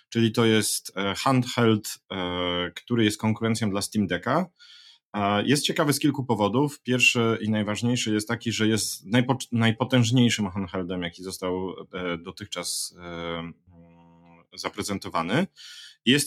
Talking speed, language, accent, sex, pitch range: 105 wpm, Polish, native, male, 90-115 Hz